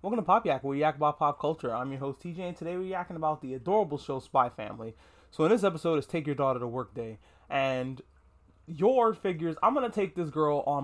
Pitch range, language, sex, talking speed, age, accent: 135-175 Hz, English, male, 245 wpm, 20-39, American